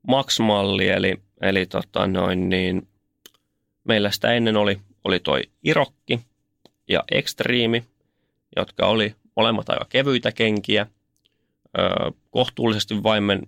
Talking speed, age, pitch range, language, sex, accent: 105 wpm, 30-49, 100-110 Hz, Finnish, male, native